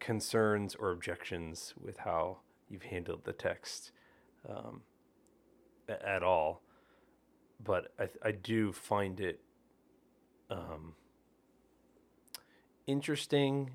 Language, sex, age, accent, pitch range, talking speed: English, male, 30-49, American, 95-115 Hz, 85 wpm